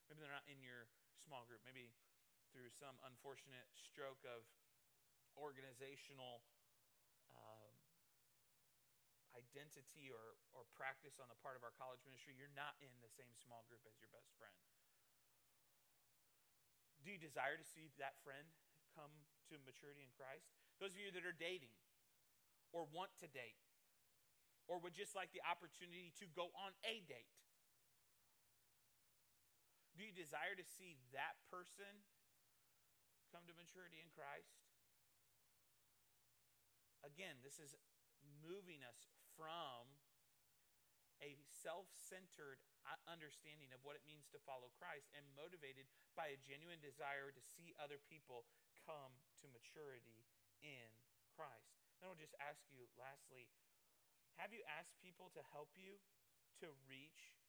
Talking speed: 135 wpm